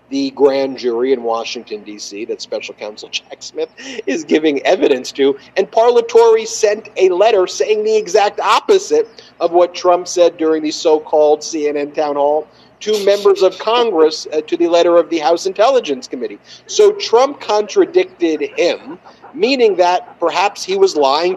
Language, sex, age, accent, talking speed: English, male, 50-69, American, 160 wpm